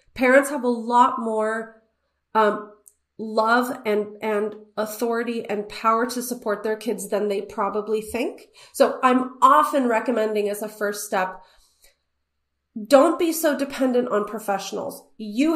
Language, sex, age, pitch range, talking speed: English, female, 30-49, 205-245 Hz, 135 wpm